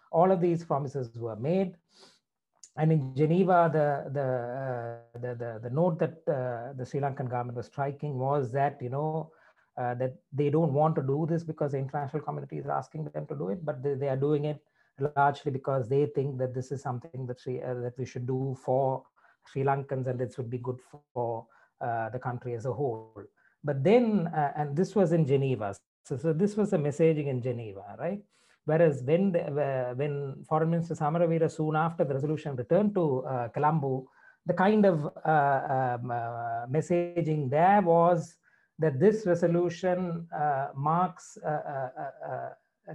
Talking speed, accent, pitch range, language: 180 wpm, Indian, 130-160 Hz, English